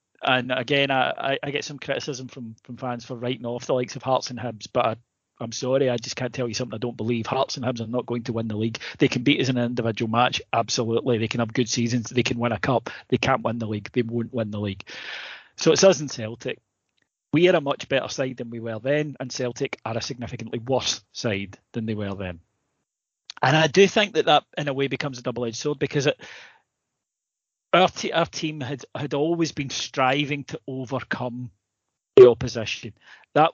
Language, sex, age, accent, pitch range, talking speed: English, male, 30-49, British, 115-140 Hz, 225 wpm